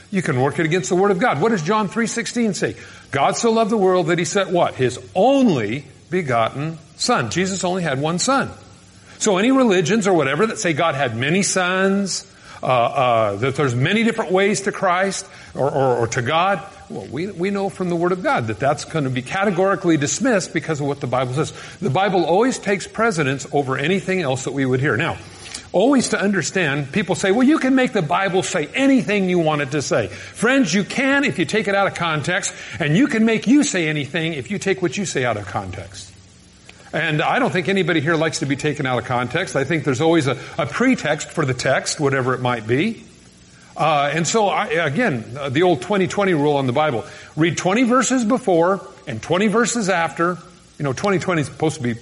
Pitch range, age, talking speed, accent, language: 135-195 Hz, 50-69, 220 wpm, American, English